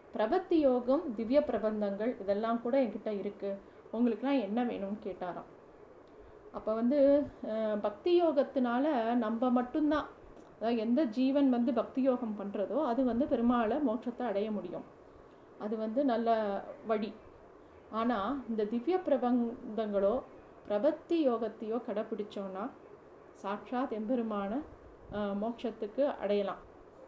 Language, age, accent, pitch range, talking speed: Tamil, 30-49, native, 215-265 Hz, 100 wpm